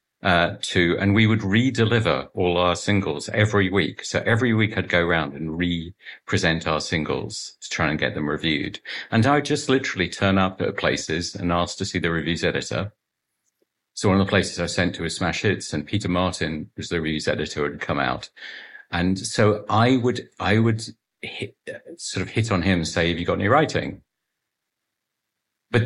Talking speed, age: 195 wpm, 50-69